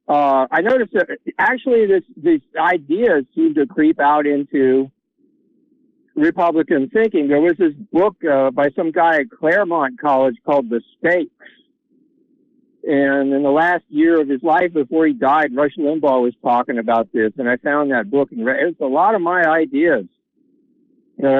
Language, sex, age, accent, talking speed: English, male, 50-69, American, 170 wpm